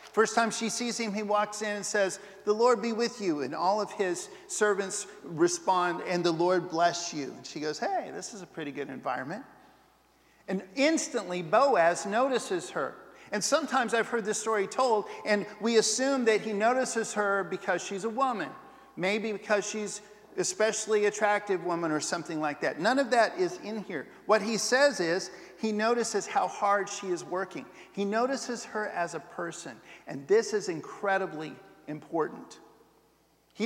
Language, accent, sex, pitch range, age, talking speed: English, American, male, 180-230 Hz, 50-69, 175 wpm